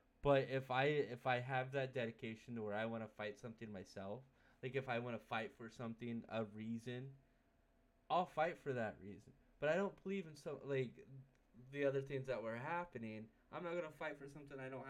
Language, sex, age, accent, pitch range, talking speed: English, male, 20-39, American, 115-140 Hz, 215 wpm